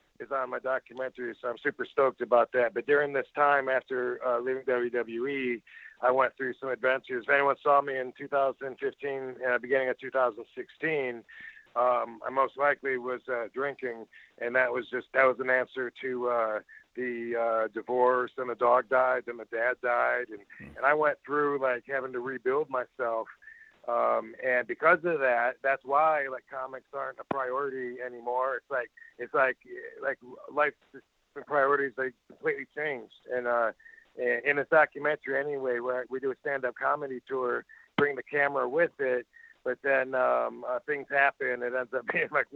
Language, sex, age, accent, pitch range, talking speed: English, male, 50-69, American, 125-145 Hz, 175 wpm